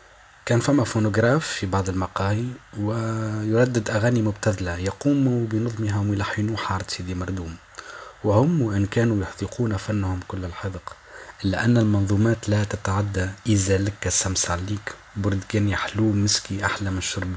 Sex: male